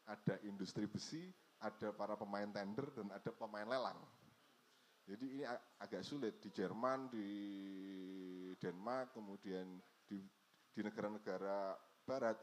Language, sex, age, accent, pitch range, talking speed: Indonesian, male, 30-49, native, 105-150 Hz, 120 wpm